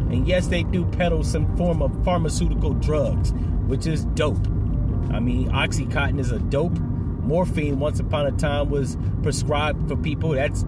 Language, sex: English, male